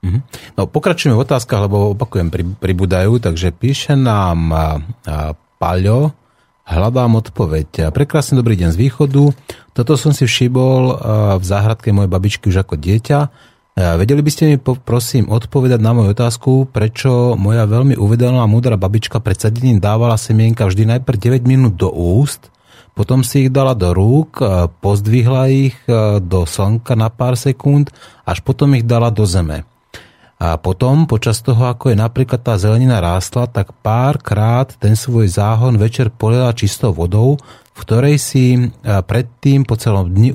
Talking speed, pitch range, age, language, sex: 150 wpm, 100-130 Hz, 30-49, Slovak, male